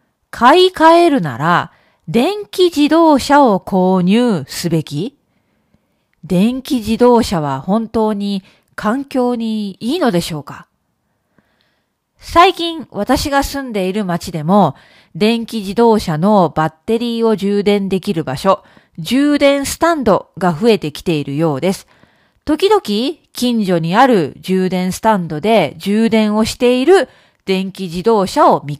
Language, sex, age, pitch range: Japanese, female, 40-59, 185-275 Hz